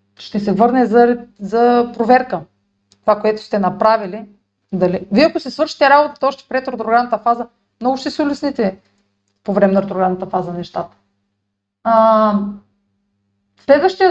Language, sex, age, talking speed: Bulgarian, female, 40-59, 135 wpm